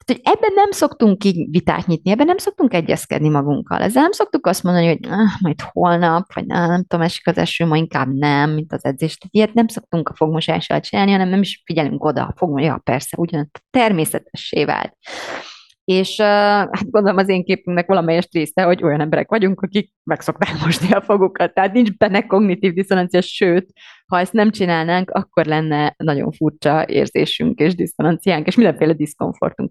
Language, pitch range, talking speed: Hungarian, 165-220 Hz, 180 wpm